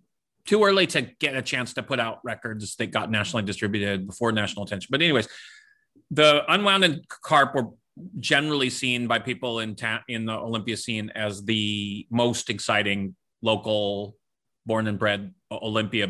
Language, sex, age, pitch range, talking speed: English, male, 30-49, 105-135 Hz, 160 wpm